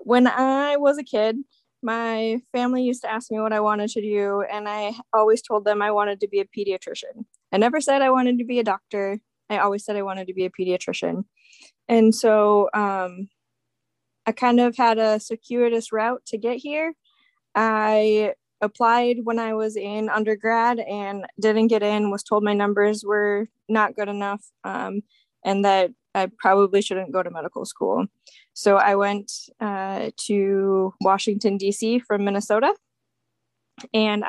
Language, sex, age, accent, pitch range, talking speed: English, female, 20-39, American, 200-230 Hz, 170 wpm